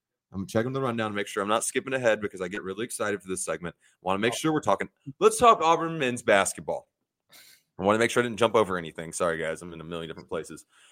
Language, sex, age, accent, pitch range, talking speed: English, male, 20-39, American, 115-190 Hz, 270 wpm